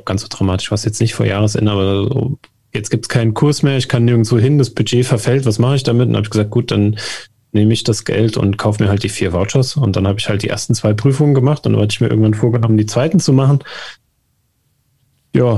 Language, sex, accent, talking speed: German, male, German, 255 wpm